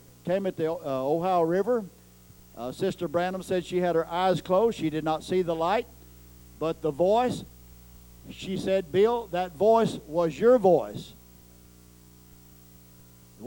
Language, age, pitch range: English, 50-69, 130-195 Hz